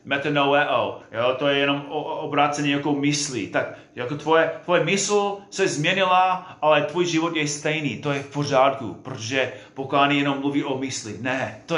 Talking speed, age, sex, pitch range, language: 155 wpm, 30-49, male, 130-160 Hz, Czech